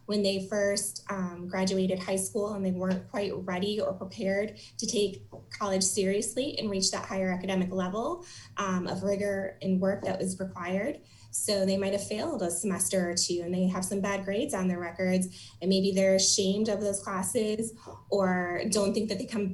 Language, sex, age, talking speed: English, female, 20-39, 190 wpm